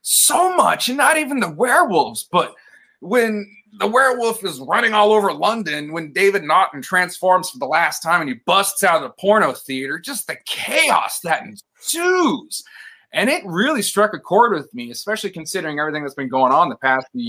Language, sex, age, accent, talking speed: English, male, 30-49, American, 190 wpm